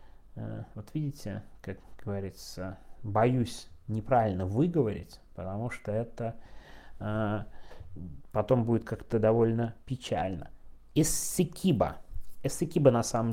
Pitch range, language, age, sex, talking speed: 105-145 Hz, Russian, 30-49, male, 90 wpm